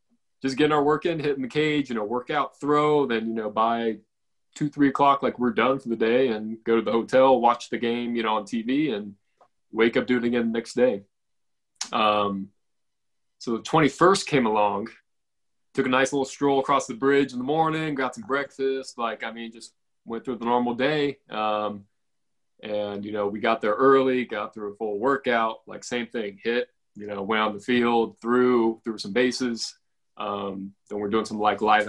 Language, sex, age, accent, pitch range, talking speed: English, male, 20-39, American, 110-135 Hz, 205 wpm